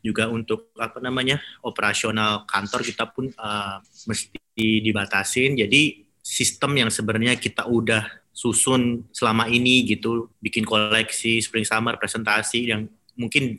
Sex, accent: male, native